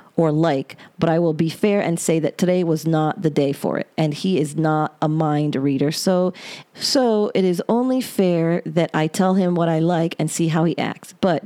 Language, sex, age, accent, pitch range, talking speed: English, female, 40-59, American, 160-195 Hz, 225 wpm